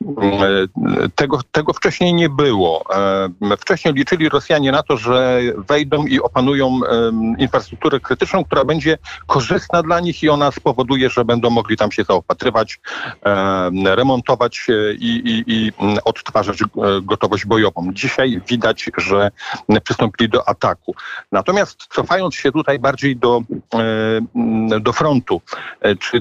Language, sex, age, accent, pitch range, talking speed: Polish, male, 50-69, native, 105-135 Hz, 120 wpm